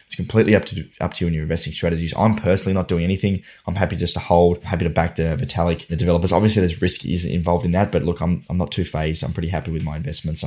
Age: 10-29